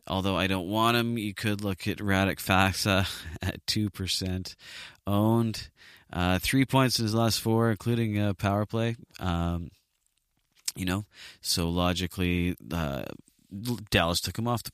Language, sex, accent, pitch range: English, male, American, 85-105 Hz